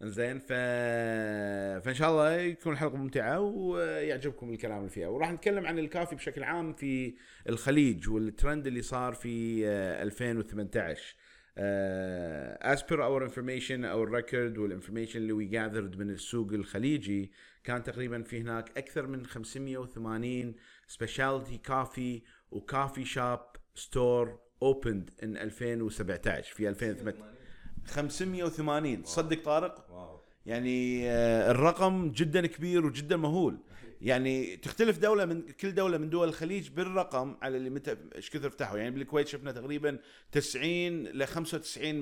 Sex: male